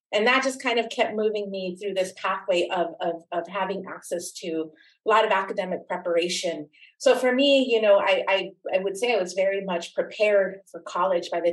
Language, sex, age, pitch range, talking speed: English, female, 30-49, 180-235 Hz, 215 wpm